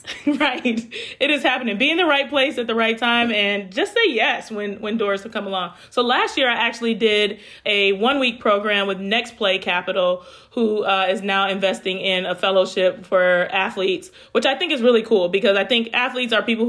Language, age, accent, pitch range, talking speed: English, 30-49, American, 195-245 Hz, 210 wpm